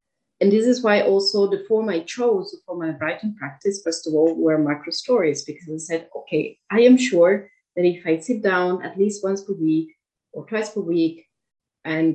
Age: 30-49